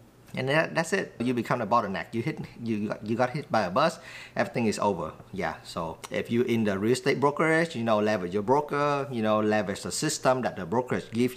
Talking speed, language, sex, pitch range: 240 wpm, English, male, 105-130 Hz